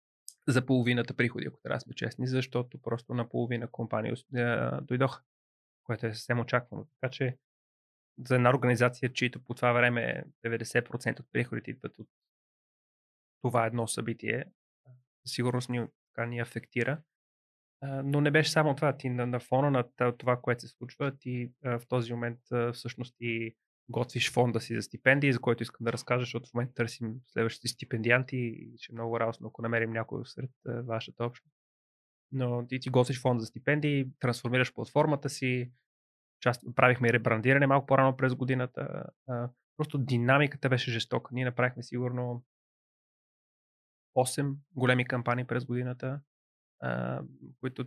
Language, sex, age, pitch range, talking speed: Bulgarian, male, 20-39, 120-130 Hz, 145 wpm